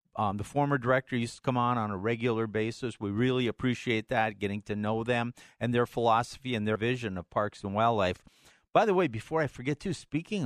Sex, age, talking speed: male, 50-69, 220 wpm